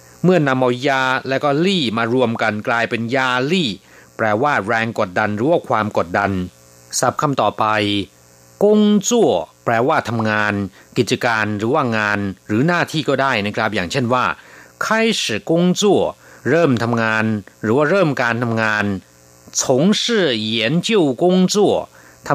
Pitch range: 105-170 Hz